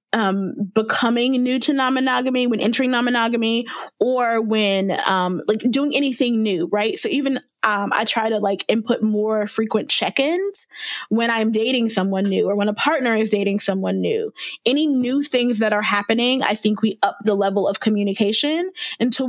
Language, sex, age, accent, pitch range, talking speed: English, female, 20-39, American, 210-250 Hz, 180 wpm